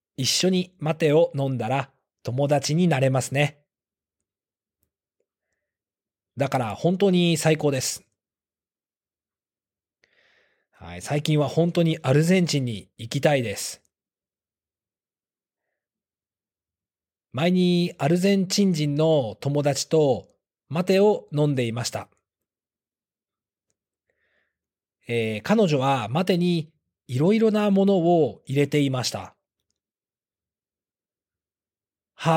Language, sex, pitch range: Japanese, male, 115-170 Hz